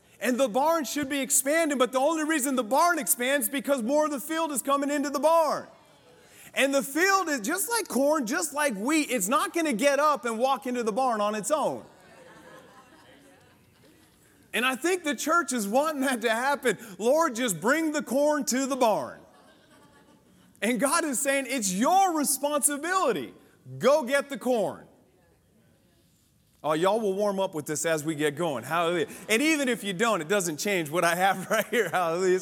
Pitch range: 190-280 Hz